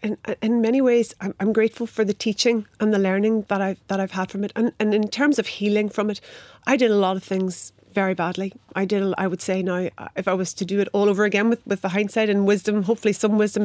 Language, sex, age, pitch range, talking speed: English, female, 40-59, 195-220 Hz, 260 wpm